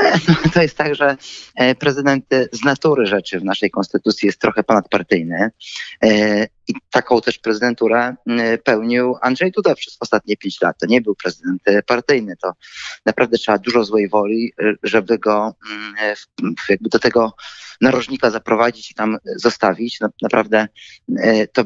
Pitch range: 110-130 Hz